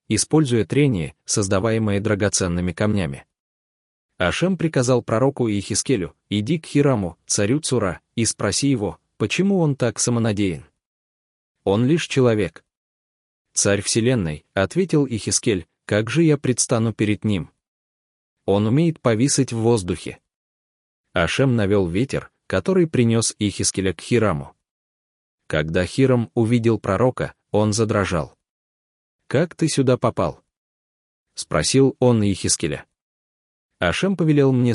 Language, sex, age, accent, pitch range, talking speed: Russian, male, 20-39, native, 85-125 Hz, 110 wpm